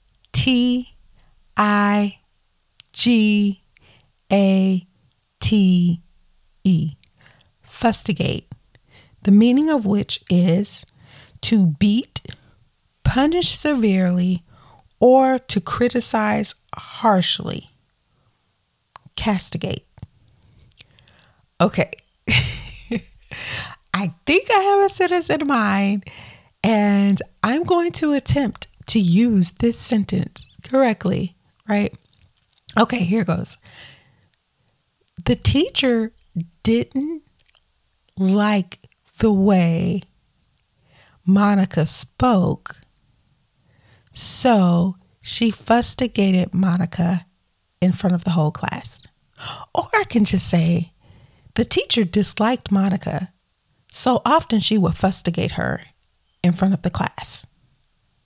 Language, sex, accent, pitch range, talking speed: English, female, American, 165-225 Hz, 80 wpm